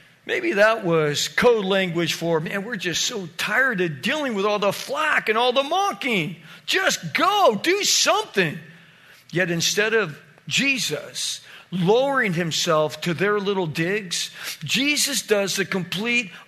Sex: male